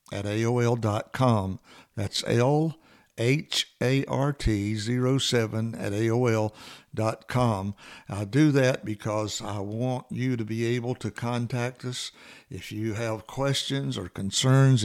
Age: 60-79